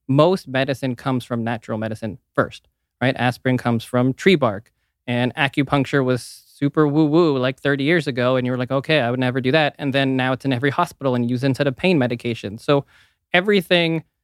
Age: 20-39